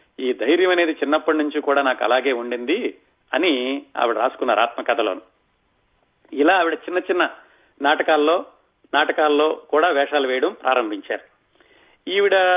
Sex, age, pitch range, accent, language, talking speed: male, 40-59, 140-180 Hz, native, Telugu, 110 wpm